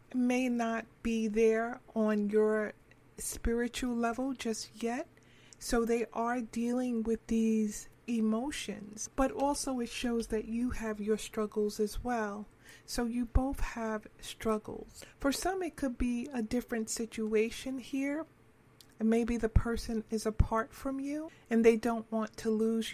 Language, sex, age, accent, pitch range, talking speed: English, female, 40-59, American, 215-240 Hz, 145 wpm